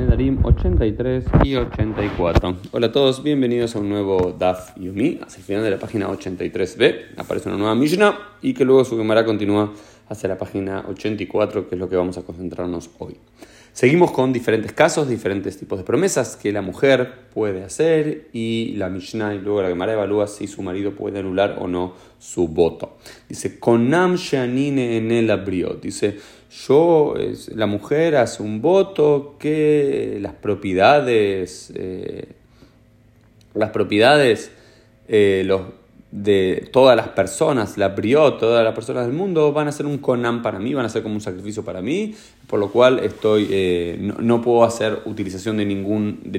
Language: Spanish